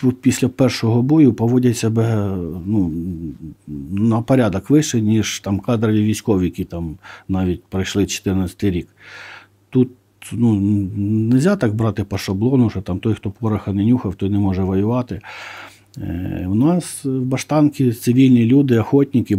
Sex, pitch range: male, 100-125 Hz